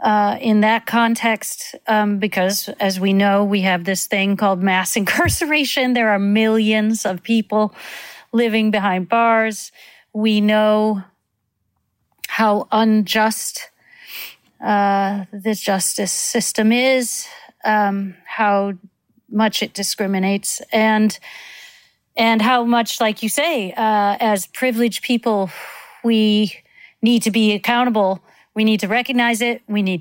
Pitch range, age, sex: 200-230 Hz, 40-59, female